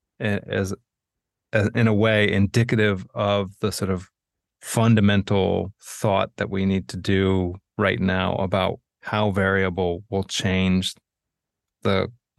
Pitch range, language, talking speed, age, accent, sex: 95-110 Hz, English, 120 wpm, 30-49, American, male